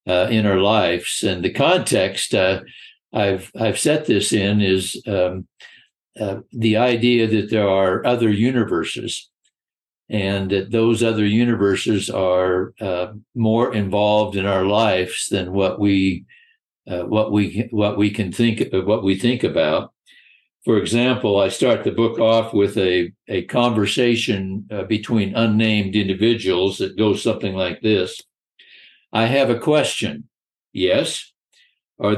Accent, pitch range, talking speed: American, 95-115 Hz, 140 wpm